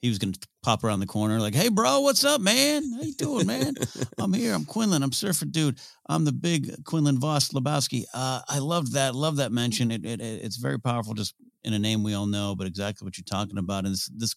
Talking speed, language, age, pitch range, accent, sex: 245 wpm, English, 40-59, 100-130 Hz, American, male